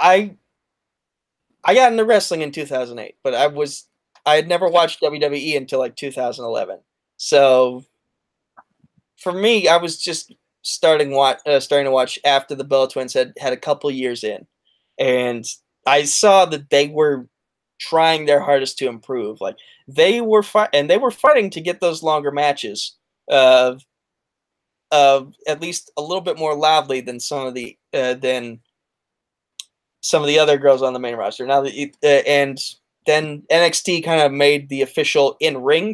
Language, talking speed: English, 165 wpm